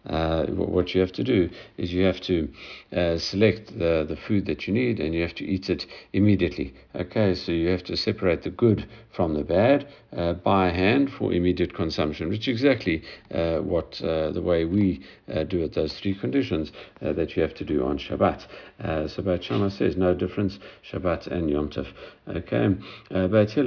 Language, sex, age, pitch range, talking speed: English, male, 50-69, 80-100 Hz, 195 wpm